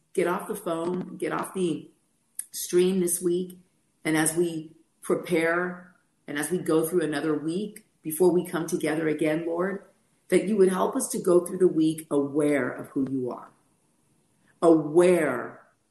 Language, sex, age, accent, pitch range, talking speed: English, female, 40-59, American, 150-180 Hz, 160 wpm